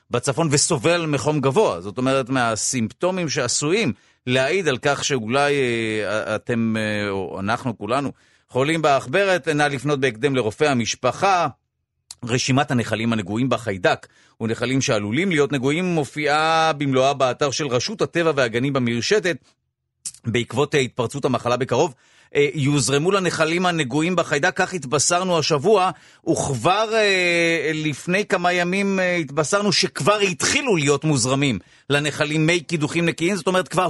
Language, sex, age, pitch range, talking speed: Hebrew, male, 40-59, 130-170 Hz, 115 wpm